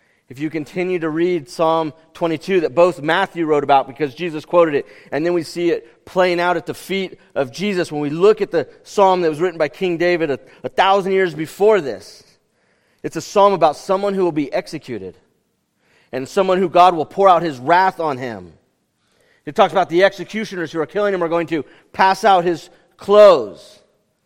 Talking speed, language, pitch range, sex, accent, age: 205 wpm, English, 155-195 Hz, male, American, 40-59